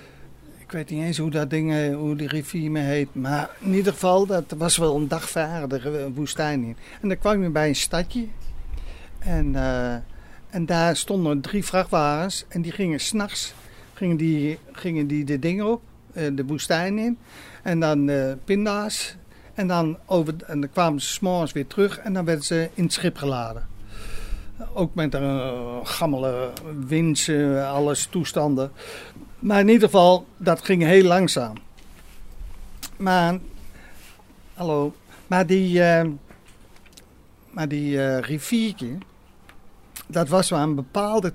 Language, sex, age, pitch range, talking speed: Dutch, male, 50-69, 135-180 Hz, 150 wpm